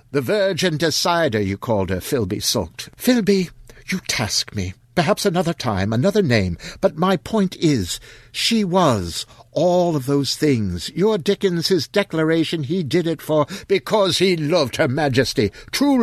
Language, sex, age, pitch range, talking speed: English, male, 60-79, 120-180 Hz, 155 wpm